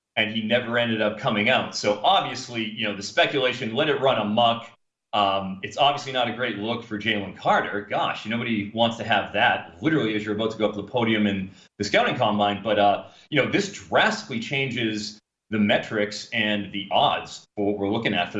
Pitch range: 105-120 Hz